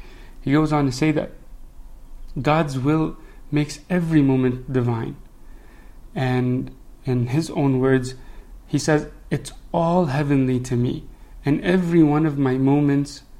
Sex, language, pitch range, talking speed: male, English, 130-155 Hz, 135 wpm